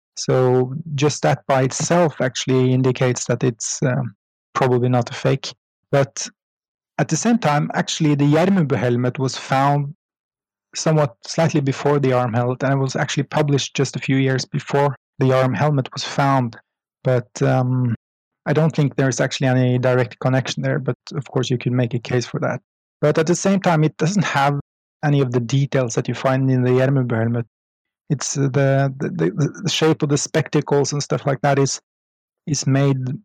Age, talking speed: 30-49, 185 wpm